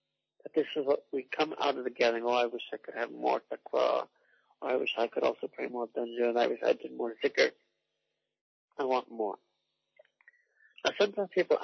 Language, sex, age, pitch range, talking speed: English, male, 50-69, 135-200 Hz, 195 wpm